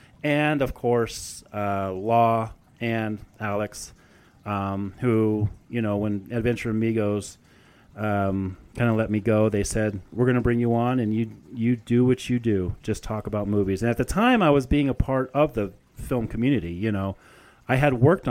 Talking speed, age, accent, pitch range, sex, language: 185 wpm, 30-49, American, 105-135 Hz, male, English